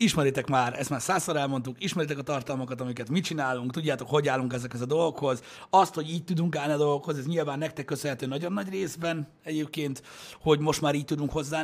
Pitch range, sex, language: 130-160 Hz, male, Hungarian